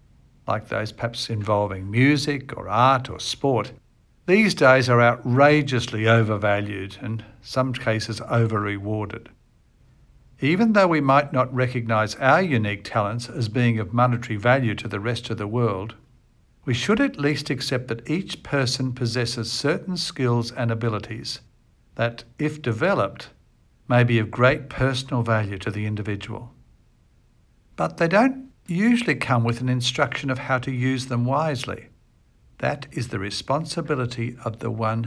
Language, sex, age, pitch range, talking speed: English, male, 60-79, 115-145 Hz, 145 wpm